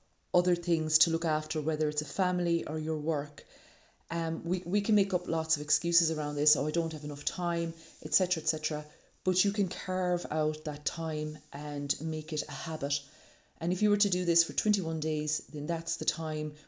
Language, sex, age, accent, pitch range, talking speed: English, female, 30-49, Irish, 150-170 Hz, 210 wpm